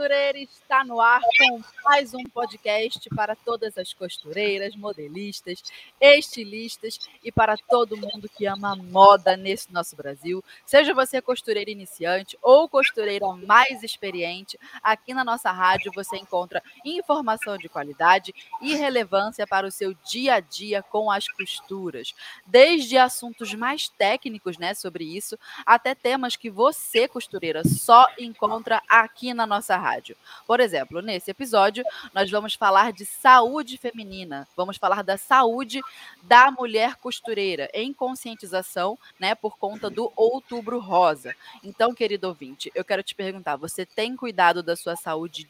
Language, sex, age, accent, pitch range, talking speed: Portuguese, female, 20-39, Brazilian, 190-245 Hz, 140 wpm